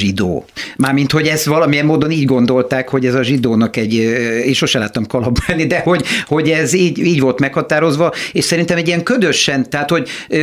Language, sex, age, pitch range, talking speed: Hungarian, male, 60-79, 130-165 Hz, 185 wpm